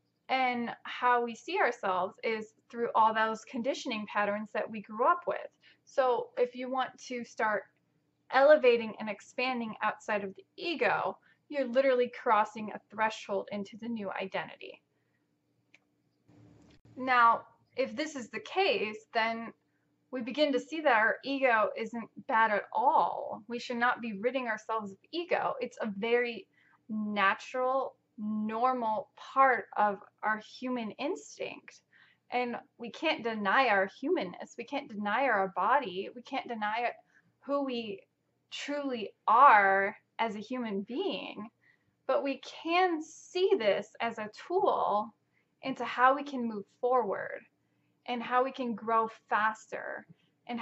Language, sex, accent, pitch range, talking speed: English, female, American, 215-265 Hz, 140 wpm